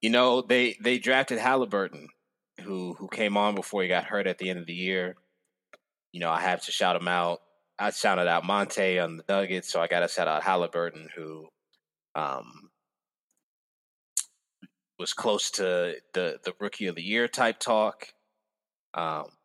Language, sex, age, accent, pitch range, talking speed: English, male, 20-39, American, 90-110 Hz, 175 wpm